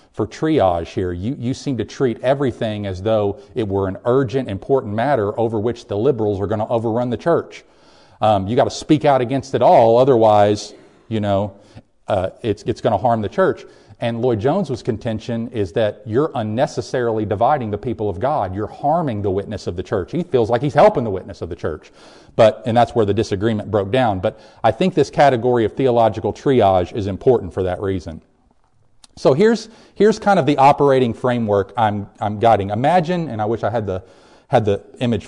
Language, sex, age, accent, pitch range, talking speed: English, male, 40-59, American, 105-135 Hz, 200 wpm